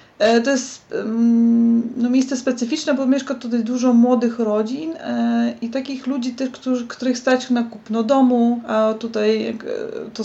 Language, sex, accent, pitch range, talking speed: Polish, female, native, 225-265 Hz, 135 wpm